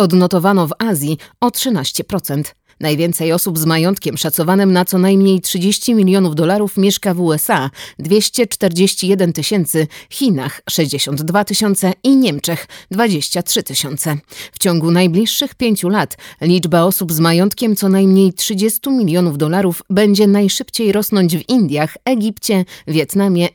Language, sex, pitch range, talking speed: Polish, female, 165-215 Hz, 125 wpm